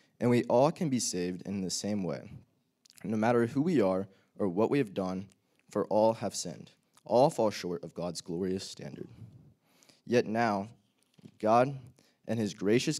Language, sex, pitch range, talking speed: English, male, 90-115 Hz, 170 wpm